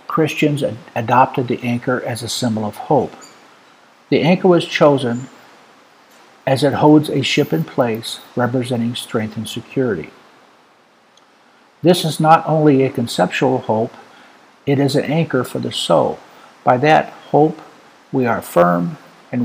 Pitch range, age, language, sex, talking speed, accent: 120-145 Hz, 60-79, English, male, 140 wpm, American